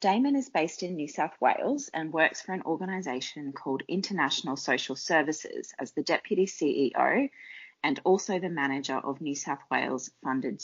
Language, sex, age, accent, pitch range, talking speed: English, female, 30-49, Australian, 145-195 Hz, 160 wpm